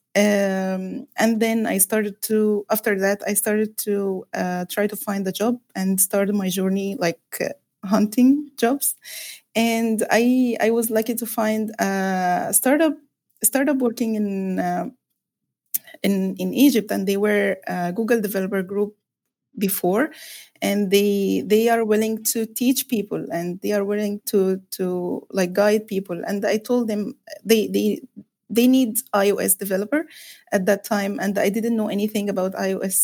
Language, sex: English, female